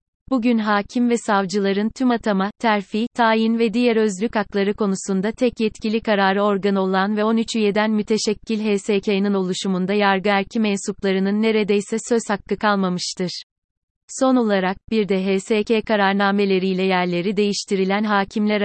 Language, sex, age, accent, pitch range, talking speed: Turkish, female, 30-49, native, 195-220 Hz, 130 wpm